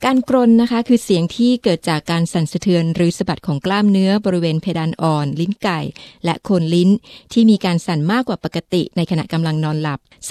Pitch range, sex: 170-215 Hz, female